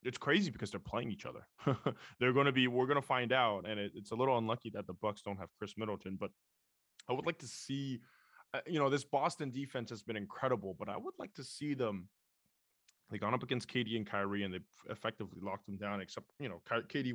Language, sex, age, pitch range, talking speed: English, male, 20-39, 100-130 Hz, 240 wpm